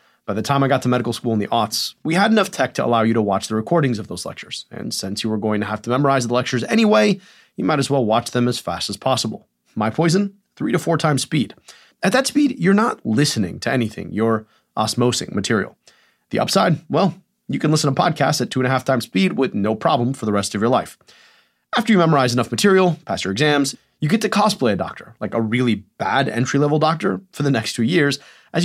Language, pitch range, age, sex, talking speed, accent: English, 110-165 Hz, 30-49, male, 240 wpm, American